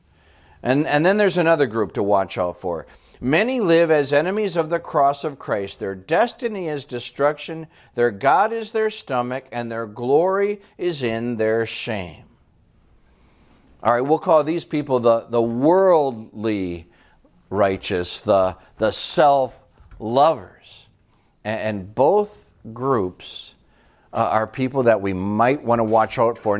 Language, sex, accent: English, male, American